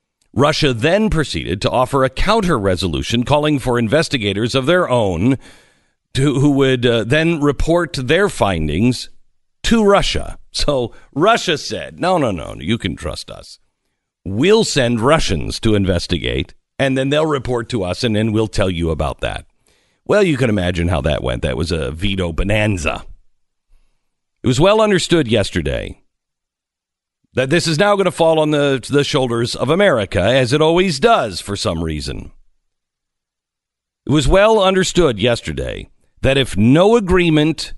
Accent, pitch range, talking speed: American, 100-160 Hz, 150 wpm